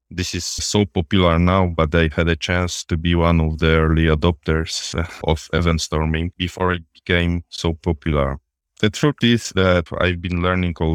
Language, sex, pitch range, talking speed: English, male, 80-90 Hz, 175 wpm